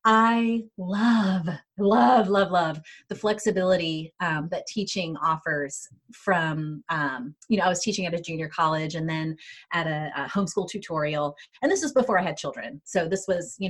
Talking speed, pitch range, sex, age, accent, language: 175 wpm, 170-235 Hz, female, 30-49, American, English